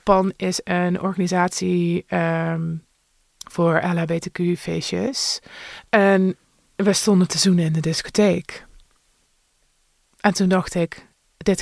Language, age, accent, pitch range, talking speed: Dutch, 20-39, Dutch, 175-195 Hz, 100 wpm